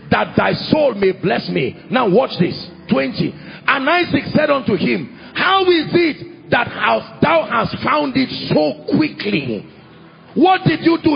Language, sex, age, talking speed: English, male, 50-69, 160 wpm